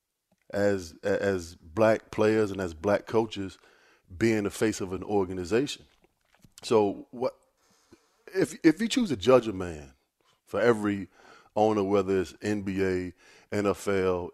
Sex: male